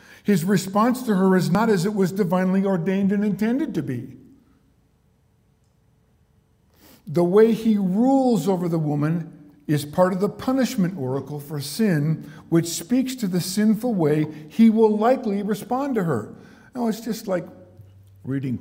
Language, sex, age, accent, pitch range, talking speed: English, male, 50-69, American, 115-190 Hz, 150 wpm